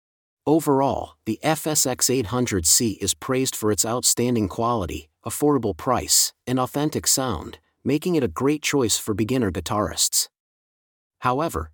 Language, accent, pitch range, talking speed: English, American, 95-125 Hz, 120 wpm